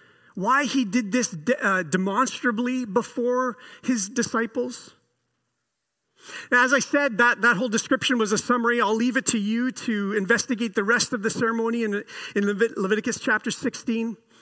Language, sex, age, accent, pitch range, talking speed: English, male, 40-59, American, 220-270 Hz, 150 wpm